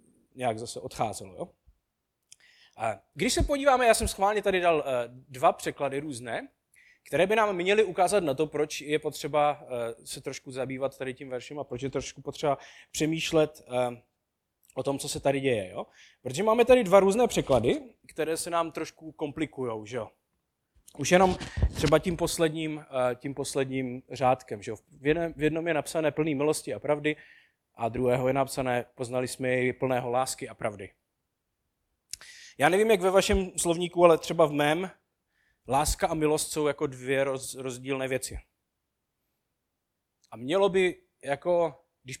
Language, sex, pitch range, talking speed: Czech, male, 130-165 Hz, 155 wpm